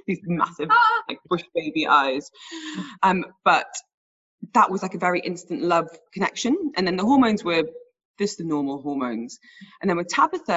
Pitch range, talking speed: 160-250 Hz, 165 wpm